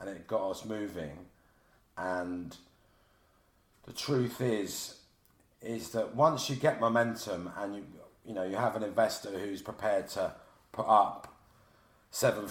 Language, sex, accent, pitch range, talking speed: English, male, British, 90-120 Hz, 140 wpm